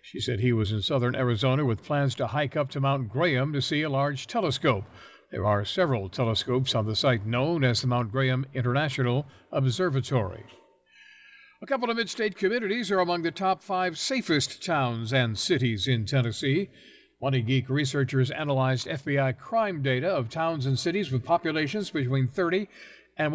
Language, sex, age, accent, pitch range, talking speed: English, male, 60-79, American, 125-165 Hz, 170 wpm